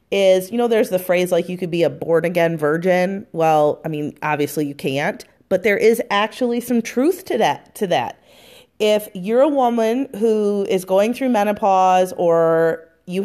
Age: 30-49